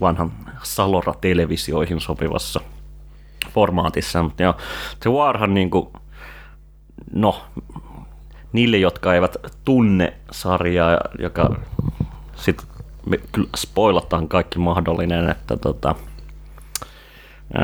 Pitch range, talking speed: 80-95 Hz, 80 wpm